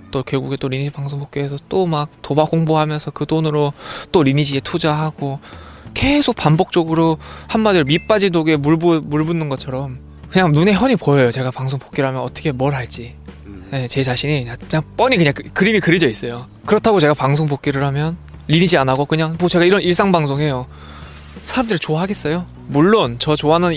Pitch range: 130-165 Hz